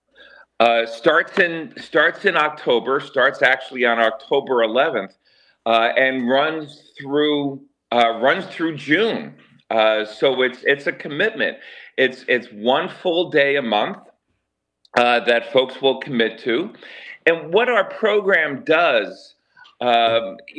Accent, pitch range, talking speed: American, 110-145 Hz, 130 wpm